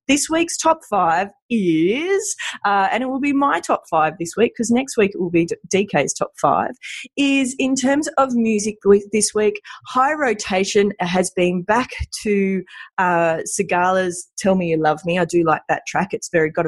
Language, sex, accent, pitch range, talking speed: English, female, Australian, 165-240 Hz, 185 wpm